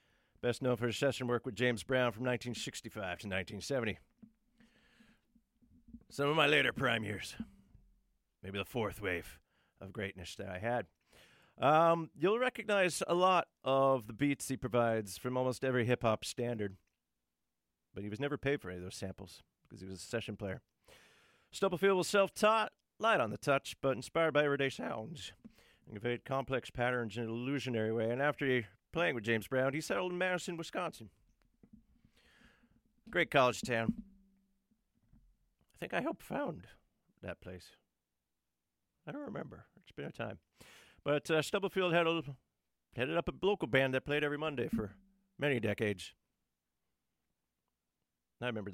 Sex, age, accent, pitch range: male, 40-59, American, 105-165 Hz